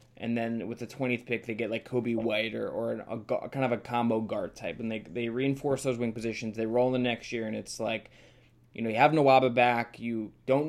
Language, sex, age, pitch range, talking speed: English, male, 20-39, 110-125 Hz, 245 wpm